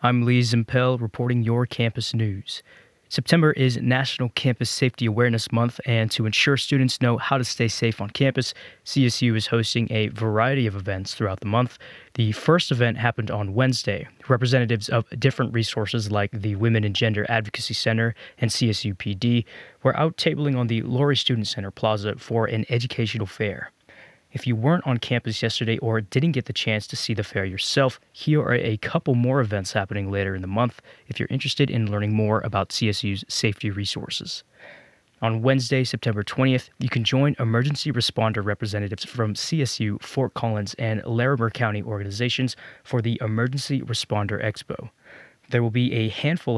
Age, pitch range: 20-39, 110-130 Hz